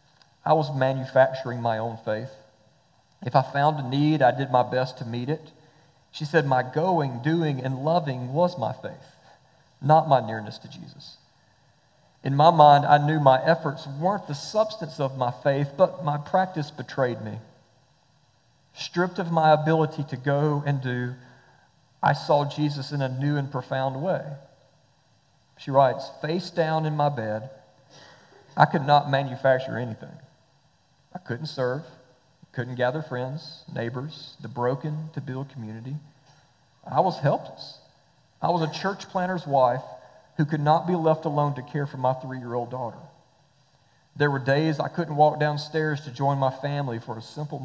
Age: 40-59